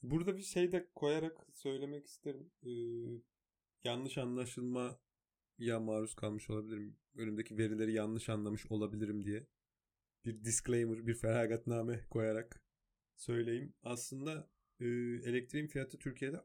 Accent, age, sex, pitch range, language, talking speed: native, 30-49, male, 105-120 Hz, Turkish, 115 wpm